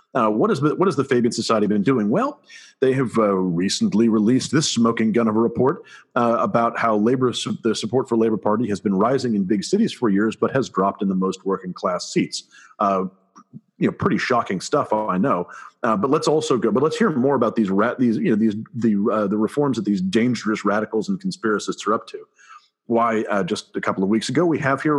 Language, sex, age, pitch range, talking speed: English, male, 40-59, 110-145 Hz, 235 wpm